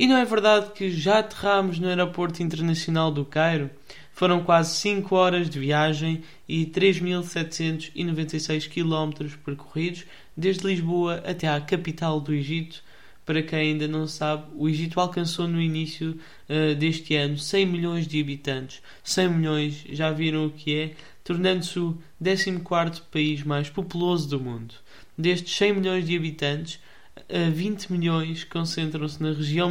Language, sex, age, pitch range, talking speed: Portuguese, male, 20-39, 150-170 Hz, 145 wpm